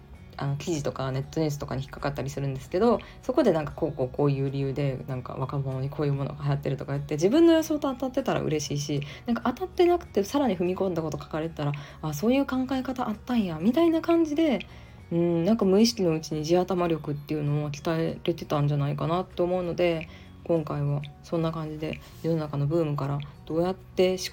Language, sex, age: Japanese, female, 20-39